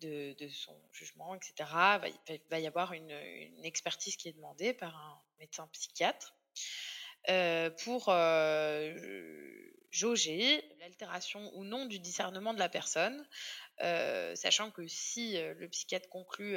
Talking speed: 140 wpm